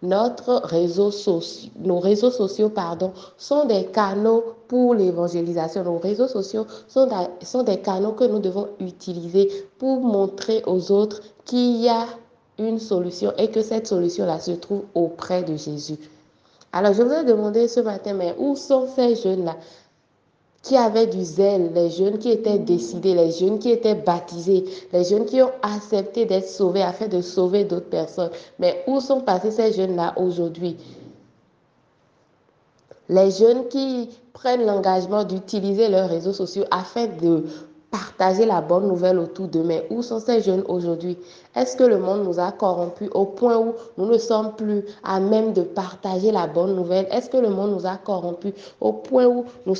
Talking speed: 170 wpm